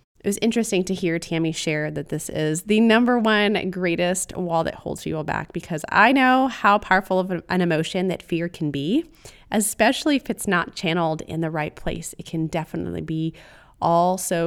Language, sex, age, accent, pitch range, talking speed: English, female, 20-39, American, 165-210 Hz, 185 wpm